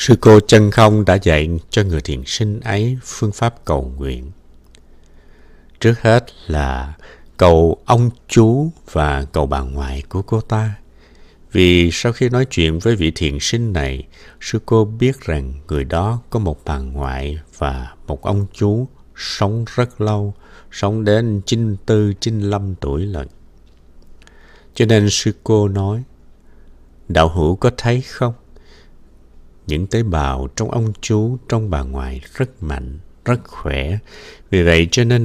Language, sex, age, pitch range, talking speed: Vietnamese, male, 60-79, 80-110 Hz, 150 wpm